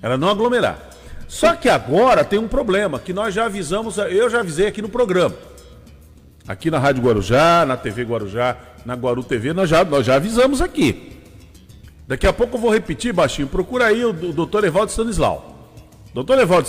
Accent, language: Brazilian, Portuguese